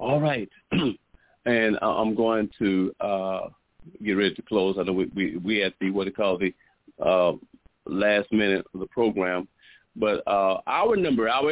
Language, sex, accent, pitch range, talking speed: English, male, American, 110-170 Hz, 165 wpm